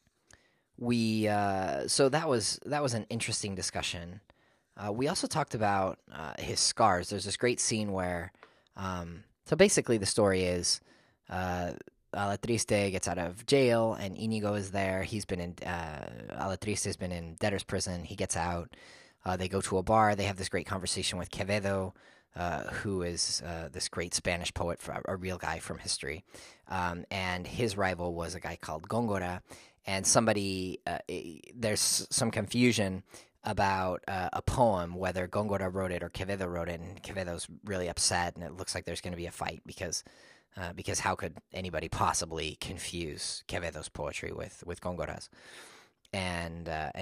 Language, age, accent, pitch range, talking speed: English, 20-39, American, 85-100 Hz, 170 wpm